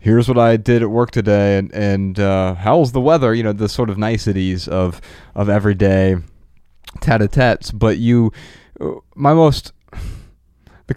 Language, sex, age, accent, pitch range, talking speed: English, male, 20-39, American, 90-120 Hz, 155 wpm